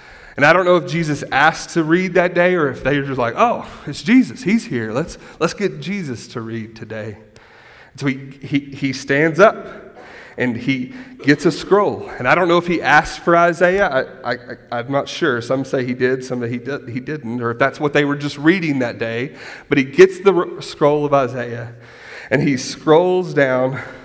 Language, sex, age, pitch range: English, male, 30-49, 120-150 Hz